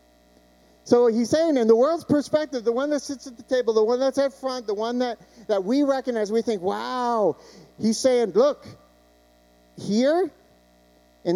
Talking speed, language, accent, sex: 175 wpm, English, American, male